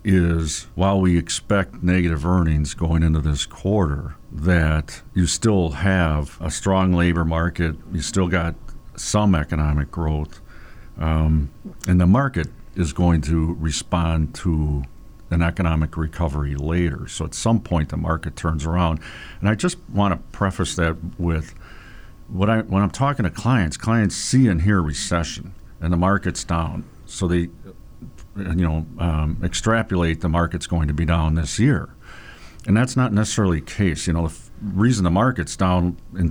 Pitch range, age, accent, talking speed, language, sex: 80-95 Hz, 50-69, American, 160 wpm, English, male